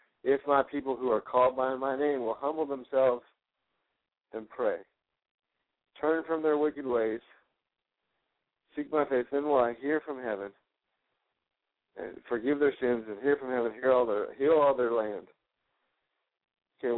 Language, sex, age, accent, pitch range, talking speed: English, male, 60-79, American, 115-140 Hz, 150 wpm